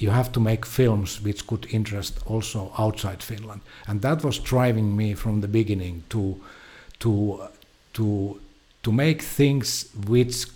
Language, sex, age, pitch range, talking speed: English, male, 60-79, 100-120 Hz, 150 wpm